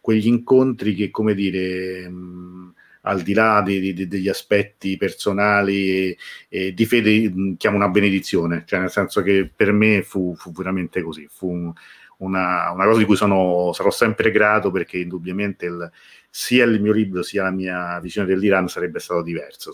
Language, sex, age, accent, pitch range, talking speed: Italian, male, 40-59, native, 90-110 Hz, 155 wpm